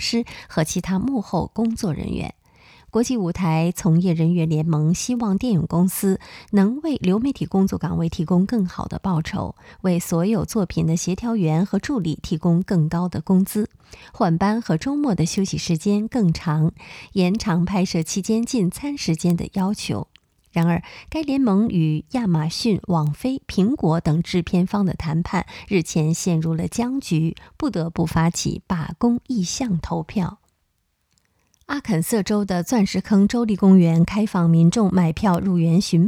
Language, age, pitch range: Chinese, 20-39, 170-215 Hz